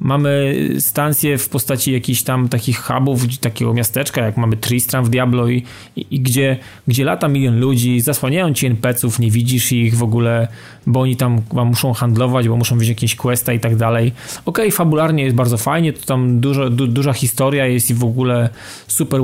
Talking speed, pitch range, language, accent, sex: 190 wpm, 120-150 Hz, Polish, native, male